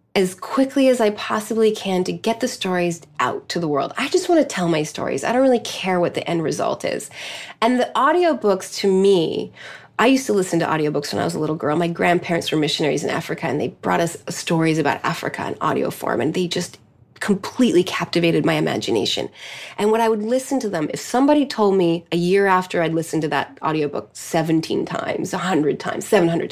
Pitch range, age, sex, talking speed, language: 170-220 Hz, 30-49, female, 215 wpm, English